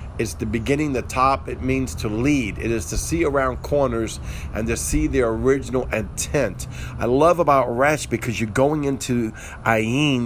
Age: 50-69